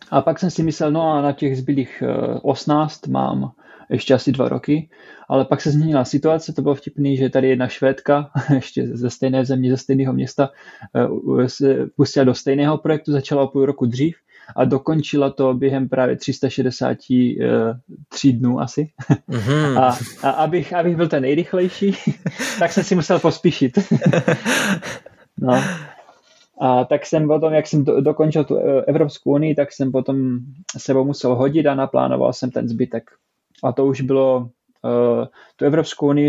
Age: 20-39